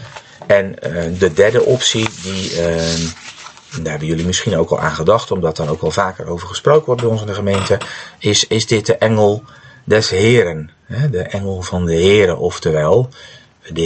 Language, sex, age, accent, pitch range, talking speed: Dutch, male, 40-59, Dutch, 90-115 Hz, 165 wpm